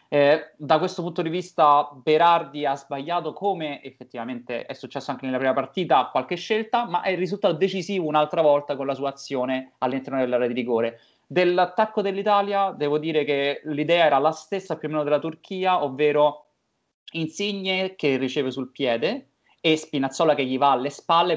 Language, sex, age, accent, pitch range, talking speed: Italian, male, 30-49, native, 130-170 Hz, 170 wpm